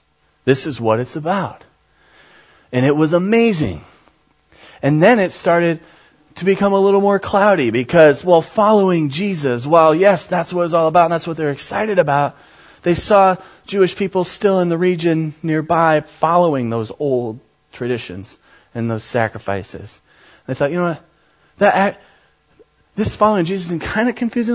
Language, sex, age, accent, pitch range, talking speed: English, male, 30-49, American, 155-215 Hz, 160 wpm